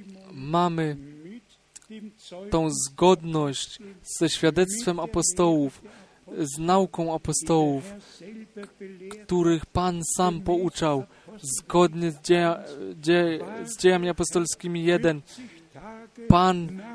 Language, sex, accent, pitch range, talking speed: Polish, male, native, 165-195 Hz, 70 wpm